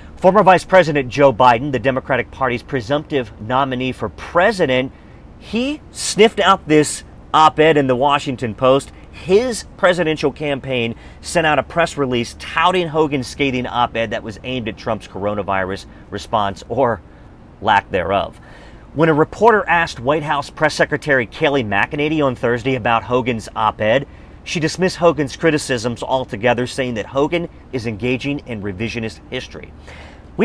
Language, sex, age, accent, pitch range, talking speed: English, male, 40-59, American, 110-150 Hz, 140 wpm